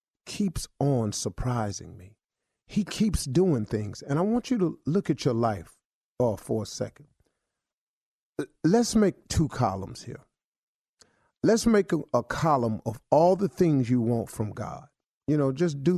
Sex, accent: male, American